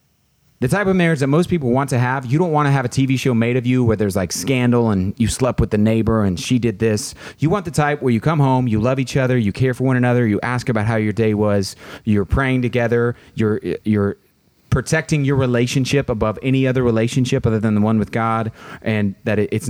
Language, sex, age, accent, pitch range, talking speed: English, male, 30-49, American, 105-135 Hz, 245 wpm